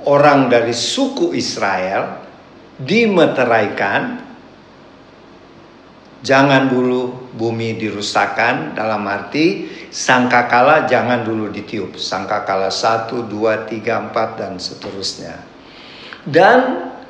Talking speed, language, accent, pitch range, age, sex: 80 wpm, Indonesian, native, 115-135 Hz, 50-69, male